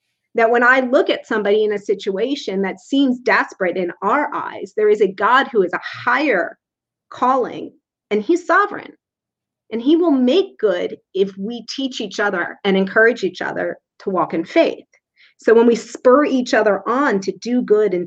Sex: female